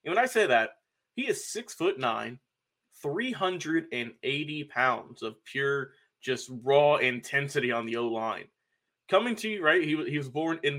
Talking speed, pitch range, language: 165 wpm, 135-155 Hz, English